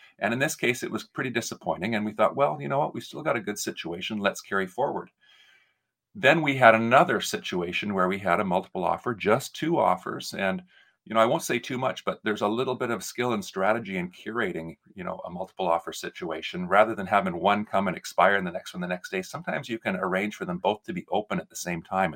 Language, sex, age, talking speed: English, male, 40-59, 245 wpm